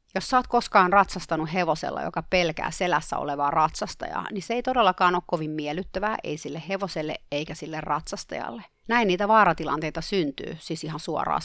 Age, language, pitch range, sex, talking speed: 30-49, Finnish, 160-205 Hz, female, 160 wpm